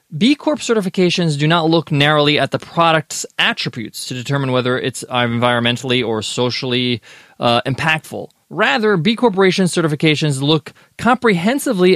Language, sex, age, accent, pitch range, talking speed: English, male, 20-39, American, 145-195 Hz, 130 wpm